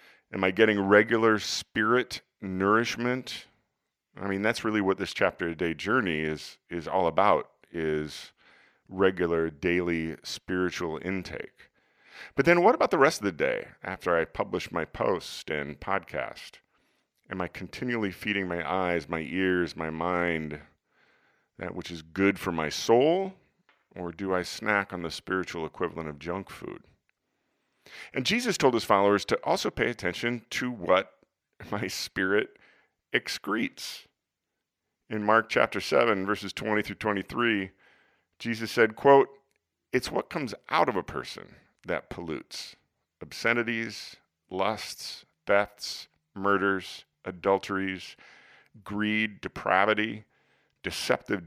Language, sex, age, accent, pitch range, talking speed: English, male, 40-59, American, 90-110 Hz, 130 wpm